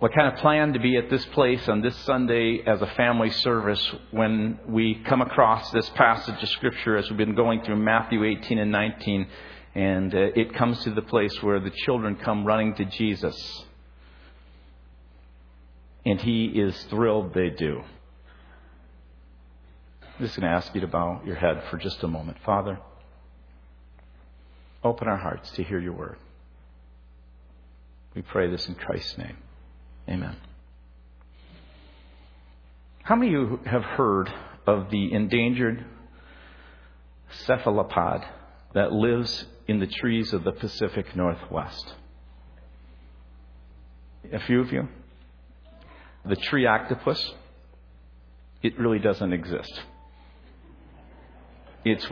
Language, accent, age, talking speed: English, American, 50-69, 130 wpm